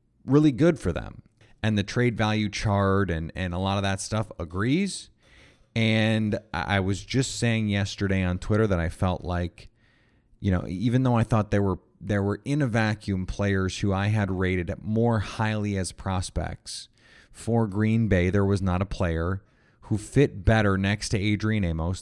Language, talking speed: English, 180 wpm